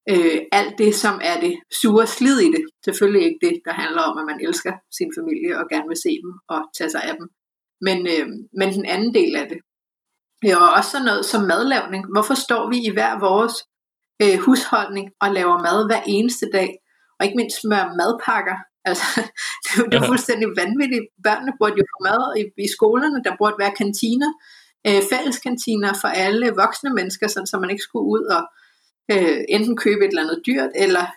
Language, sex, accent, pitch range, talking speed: Danish, female, native, 200-270 Hz, 200 wpm